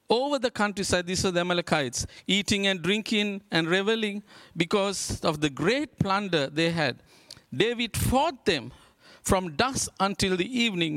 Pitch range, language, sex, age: 150-200 Hz, English, male, 50-69